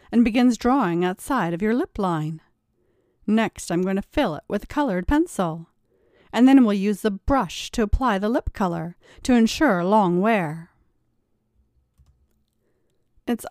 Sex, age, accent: female, 40-59, American